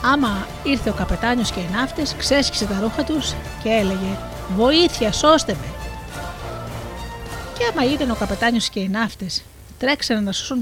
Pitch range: 170-245 Hz